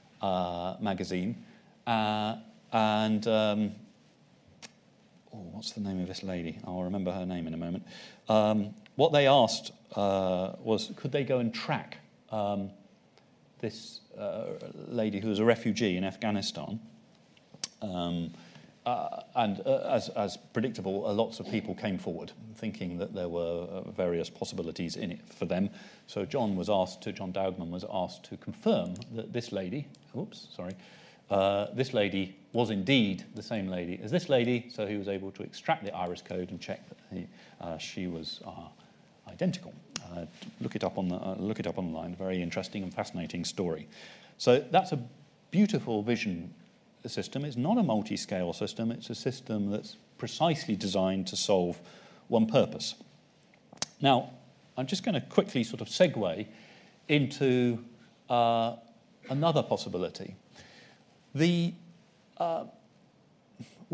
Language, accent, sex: English, British, male